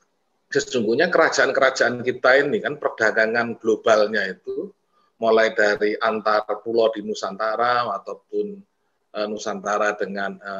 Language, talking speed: Indonesian, 95 wpm